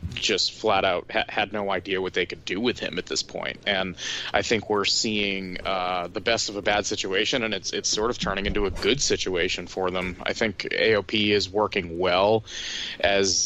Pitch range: 95-110 Hz